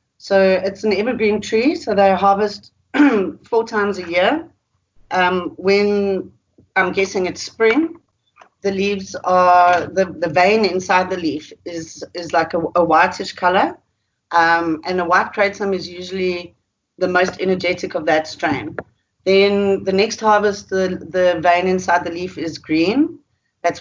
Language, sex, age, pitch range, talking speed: English, female, 30-49, 170-200 Hz, 150 wpm